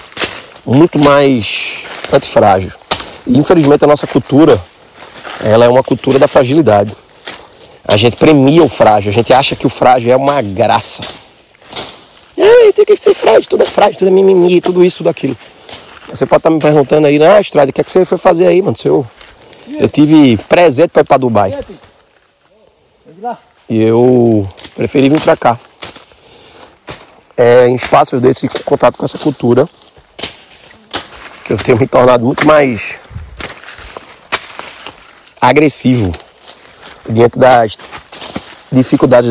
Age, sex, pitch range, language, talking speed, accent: 30-49, male, 120-155 Hz, Portuguese, 135 wpm, Brazilian